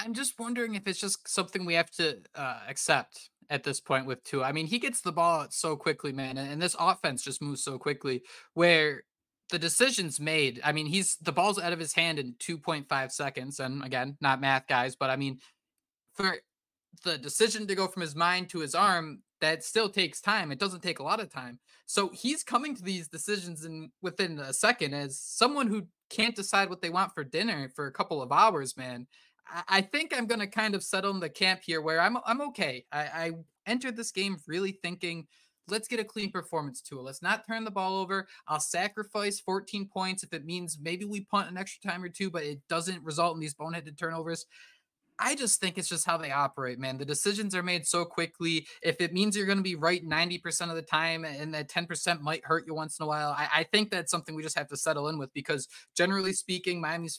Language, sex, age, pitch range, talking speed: English, male, 20-39, 150-195 Hz, 225 wpm